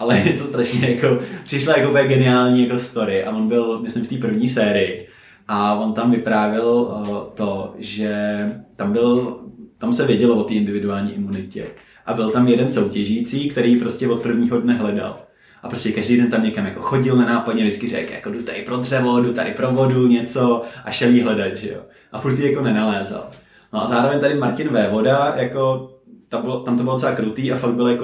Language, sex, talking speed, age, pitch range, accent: Czech, male, 195 wpm, 20-39, 115-130 Hz, native